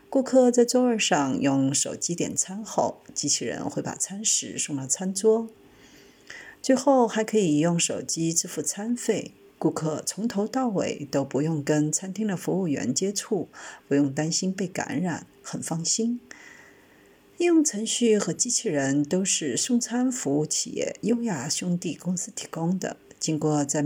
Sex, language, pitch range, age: female, Chinese, 155-225 Hz, 50-69